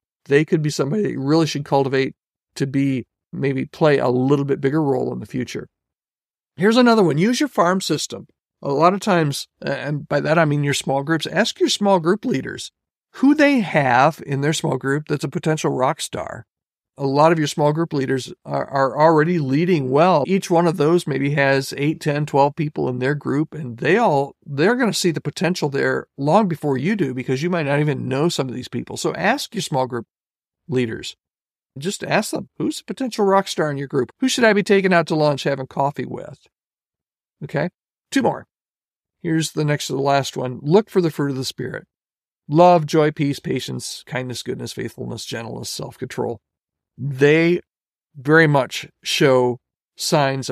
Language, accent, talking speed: English, American, 195 wpm